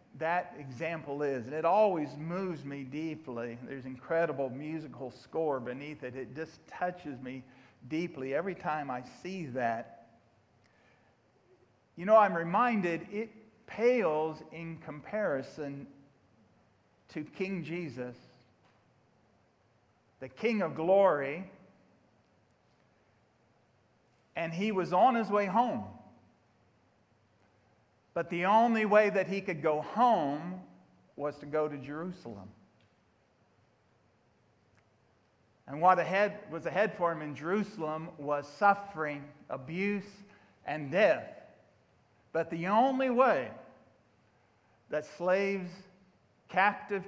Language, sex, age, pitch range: English, male, 50-69, 120-180 Hz